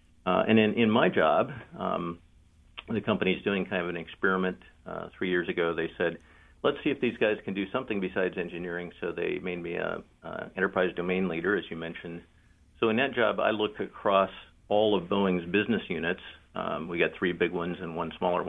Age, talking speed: 50-69, 200 wpm